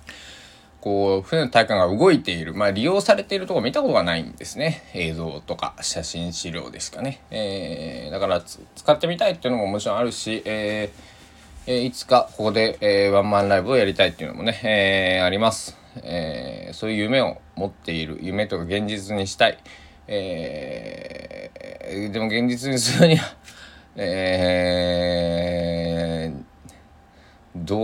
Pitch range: 85-115 Hz